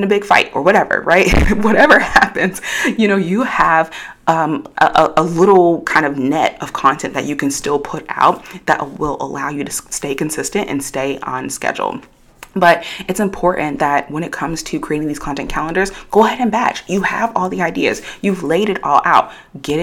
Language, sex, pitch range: English, female, 145-195 Hz